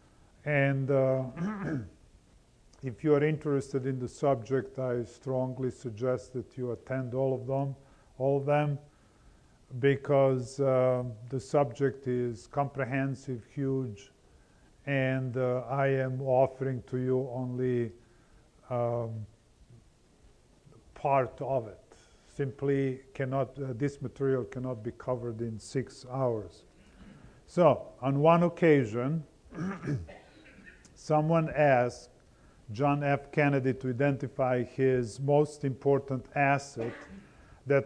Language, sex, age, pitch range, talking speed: English, male, 50-69, 125-145 Hz, 105 wpm